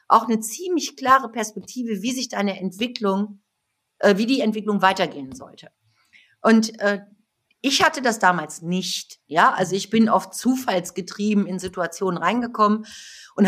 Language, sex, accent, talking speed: German, female, German, 145 wpm